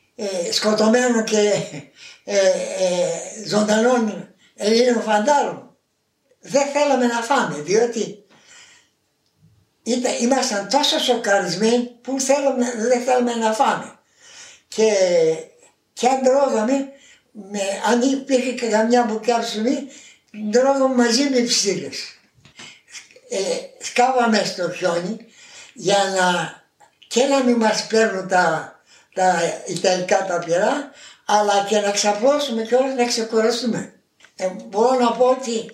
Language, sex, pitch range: Greek, male, 200-255 Hz